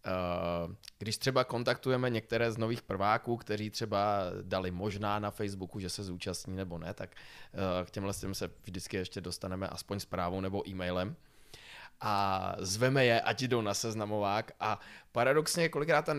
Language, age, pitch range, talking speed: Czech, 20-39, 100-140 Hz, 165 wpm